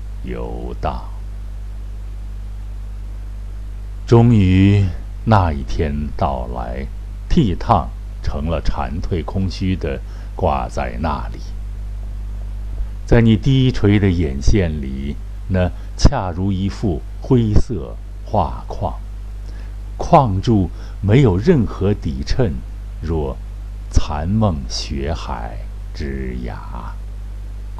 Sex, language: male, Chinese